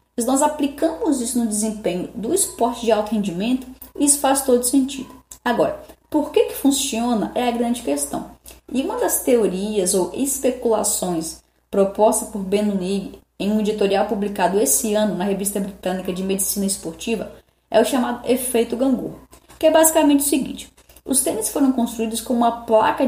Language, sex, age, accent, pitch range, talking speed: Portuguese, female, 10-29, Brazilian, 215-275 Hz, 165 wpm